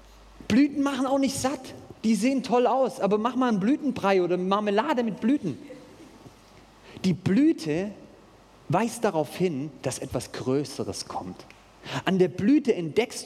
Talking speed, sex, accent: 140 wpm, male, German